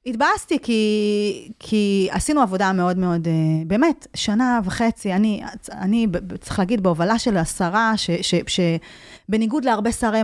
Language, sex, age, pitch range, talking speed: Hebrew, female, 30-49, 185-235 Hz, 115 wpm